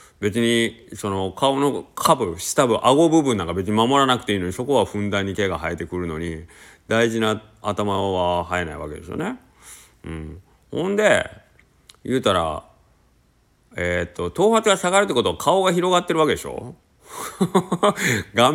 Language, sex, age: Japanese, male, 30-49